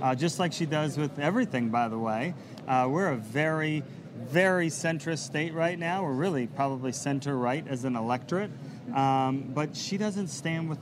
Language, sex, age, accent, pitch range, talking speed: English, male, 30-49, American, 135-170 Hz, 175 wpm